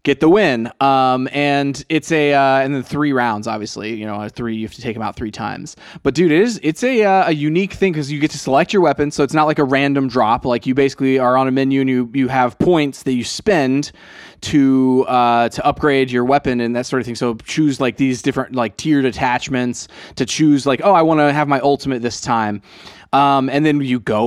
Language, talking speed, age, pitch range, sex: English, 245 wpm, 20-39, 125-150 Hz, male